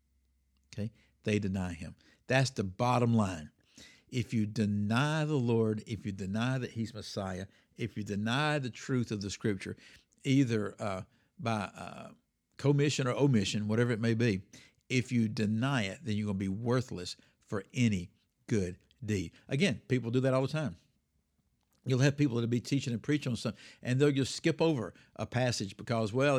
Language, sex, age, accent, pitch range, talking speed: English, male, 60-79, American, 105-135 Hz, 180 wpm